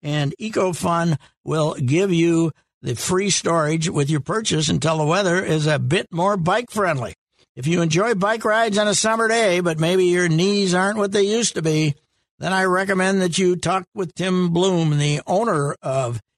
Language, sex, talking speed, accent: English, male, 185 wpm, American